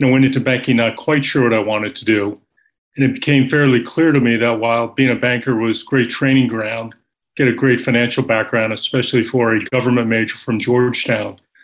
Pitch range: 120-140 Hz